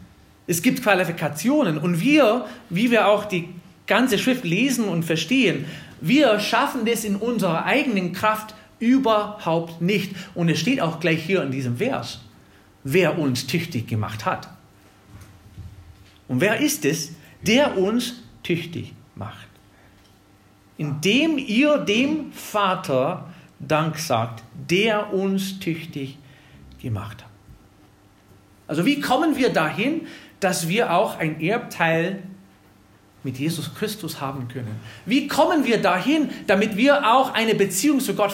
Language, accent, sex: German, German, male